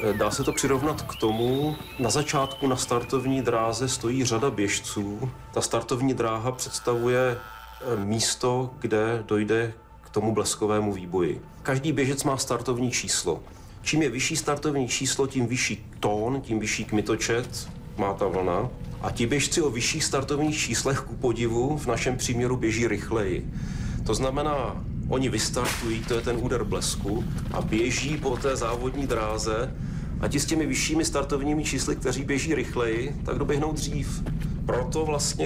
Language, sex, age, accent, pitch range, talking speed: Czech, male, 40-59, native, 110-135 Hz, 150 wpm